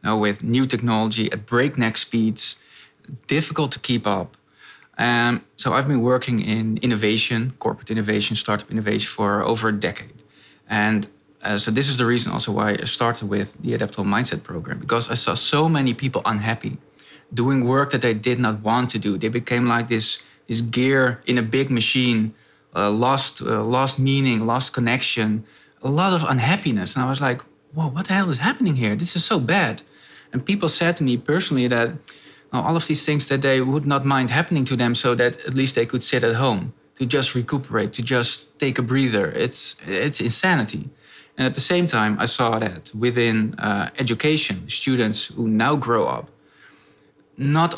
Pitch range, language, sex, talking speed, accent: 110-135 Hz, English, male, 190 wpm, Dutch